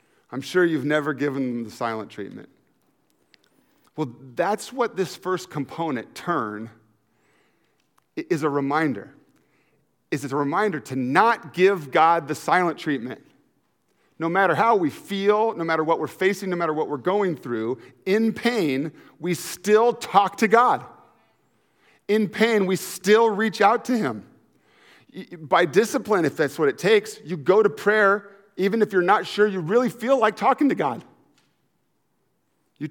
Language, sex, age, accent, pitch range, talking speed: English, male, 40-59, American, 160-230 Hz, 155 wpm